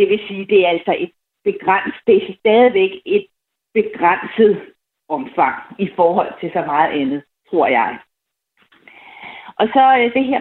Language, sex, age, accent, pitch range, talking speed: Danish, female, 30-49, native, 200-265 Hz, 155 wpm